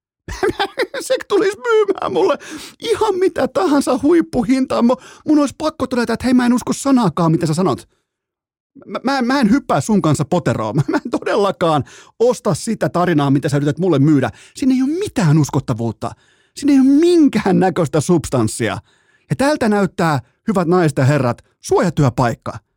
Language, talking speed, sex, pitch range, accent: Finnish, 160 wpm, male, 130-210 Hz, native